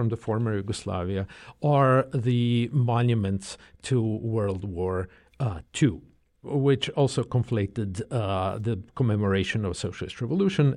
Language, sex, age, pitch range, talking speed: English, male, 50-69, 105-135 Hz, 125 wpm